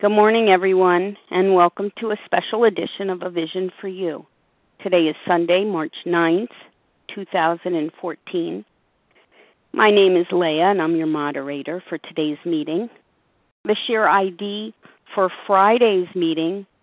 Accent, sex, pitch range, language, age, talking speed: American, female, 180-225 Hz, English, 50-69, 130 wpm